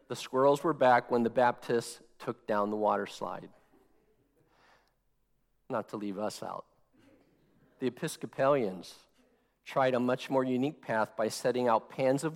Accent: American